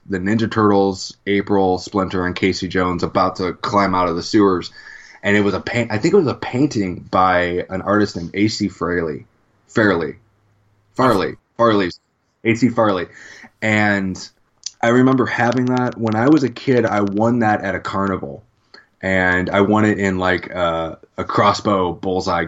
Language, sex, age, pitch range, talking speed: English, male, 20-39, 95-110 Hz, 170 wpm